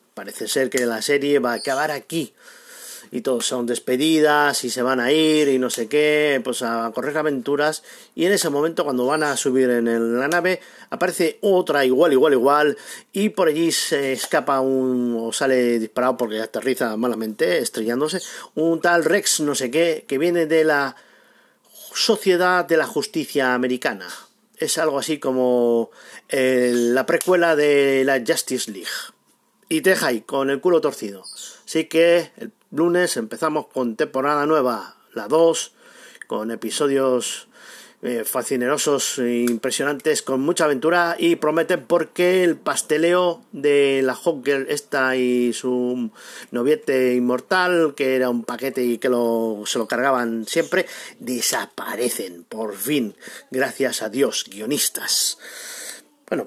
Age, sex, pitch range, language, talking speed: 40-59, male, 125-165 Hz, Spanish, 145 wpm